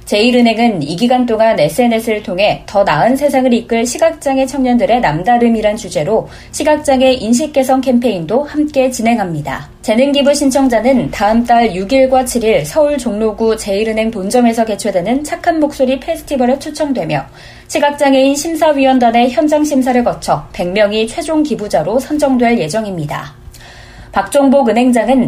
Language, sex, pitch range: Korean, female, 210-270 Hz